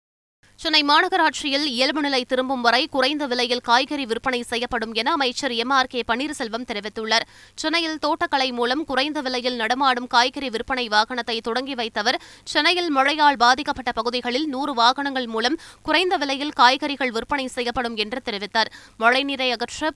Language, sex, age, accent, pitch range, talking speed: Tamil, female, 20-39, native, 240-285 Hz, 130 wpm